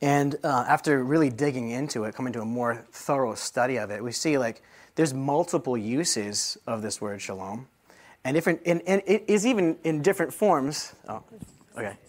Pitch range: 125-175 Hz